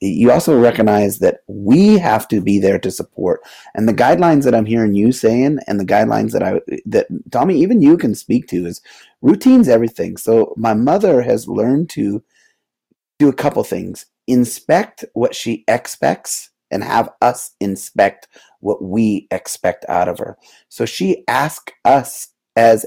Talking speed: 165 wpm